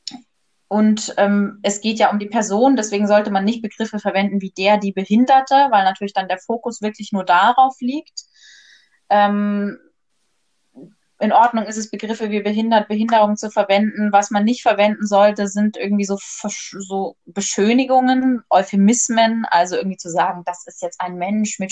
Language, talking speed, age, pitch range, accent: German, 165 wpm, 20-39, 190-220 Hz, German